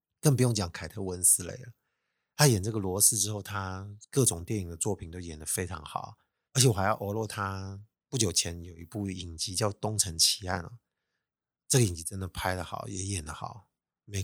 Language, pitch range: Chinese, 95-125 Hz